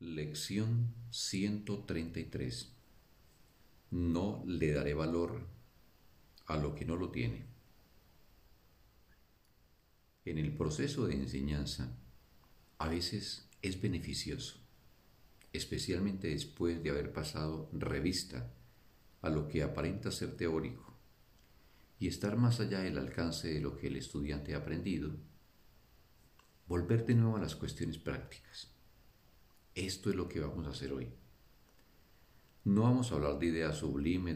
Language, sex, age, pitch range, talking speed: Spanish, male, 50-69, 70-100 Hz, 120 wpm